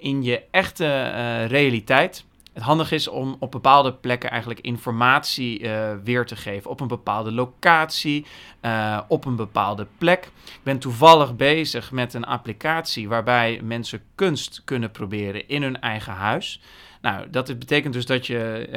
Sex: male